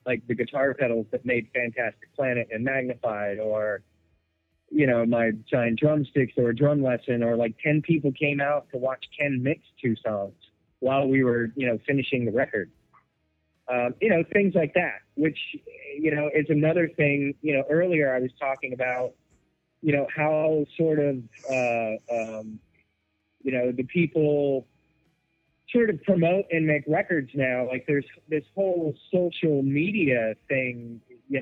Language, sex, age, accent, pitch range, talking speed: English, male, 30-49, American, 120-155 Hz, 160 wpm